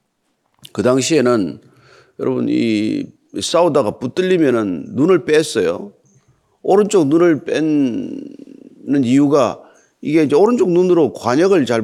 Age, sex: 40-59, male